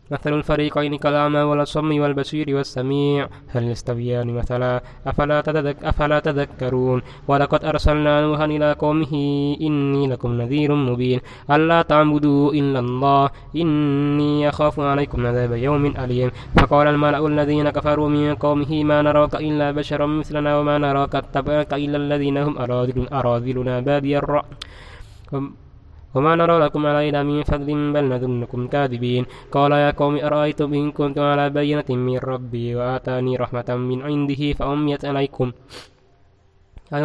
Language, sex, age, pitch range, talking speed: Indonesian, male, 20-39, 125-150 Hz, 130 wpm